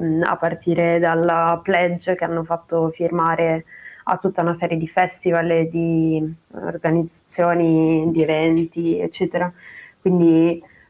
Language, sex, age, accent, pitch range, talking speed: Italian, female, 20-39, native, 160-180 Hz, 115 wpm